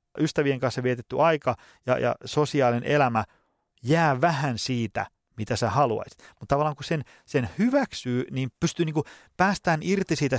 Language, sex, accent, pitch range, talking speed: Finnish, male, native, 120-155 Hz, 150 wpm